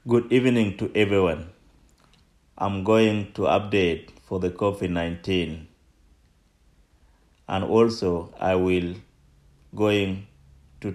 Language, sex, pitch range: English, male, 80-115 Hz